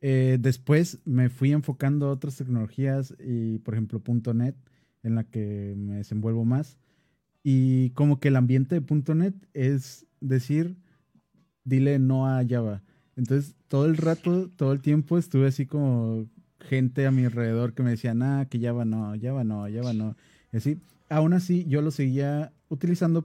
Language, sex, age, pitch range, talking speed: English, male, 30-49, 115-150 Hz, 165 wpm